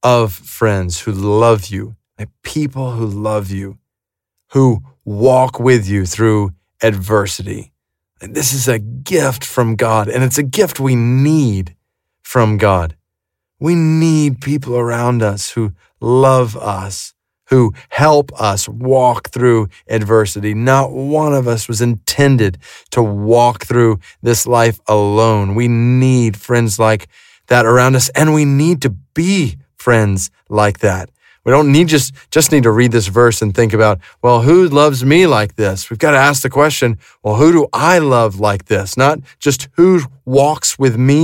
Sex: male